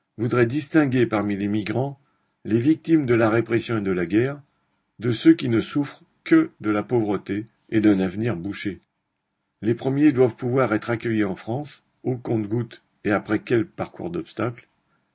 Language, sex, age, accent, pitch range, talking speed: French, male, 50-69, French, 105-125 Hz, 170 wpm